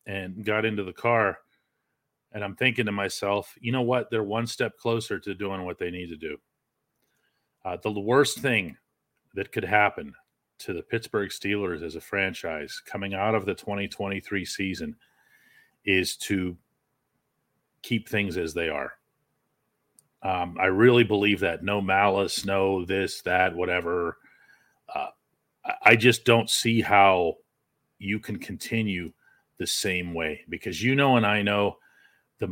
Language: English